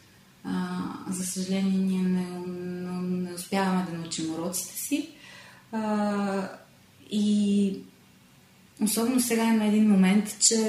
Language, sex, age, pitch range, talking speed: Bulgarian, female, 20-39, 190-215 Hz, 120 wpm